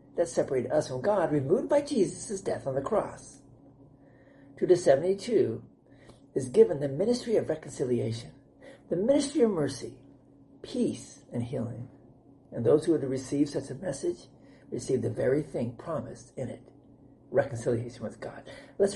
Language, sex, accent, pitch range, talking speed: English, male, American, 130-170 Hz, 150 wpm